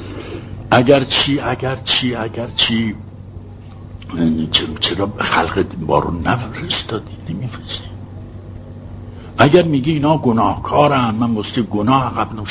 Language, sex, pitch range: Persian, male, 95-115 Hz